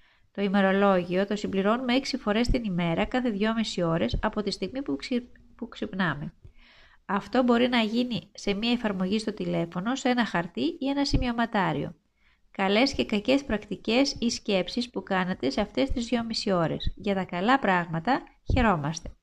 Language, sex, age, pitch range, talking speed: Greek, female, 20-39, 185-240 Hz, 160 wpm